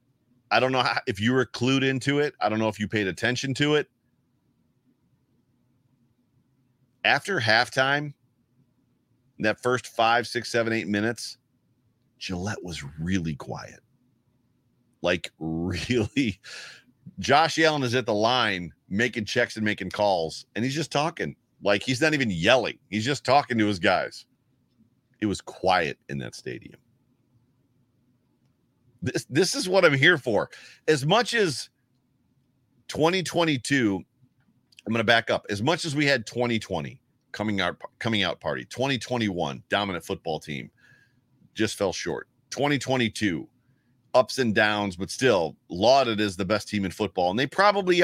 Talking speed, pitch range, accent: 145 wpm, 105-130 Hz, American